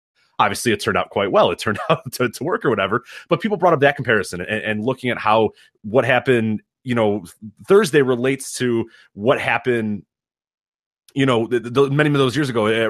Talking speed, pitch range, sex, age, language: 195 wpm, 115-155 Hz, male, 30-49, English